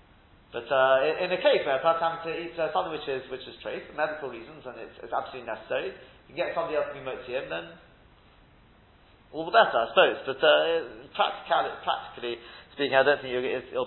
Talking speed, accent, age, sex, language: 200 wpm, British, 30-49, male, English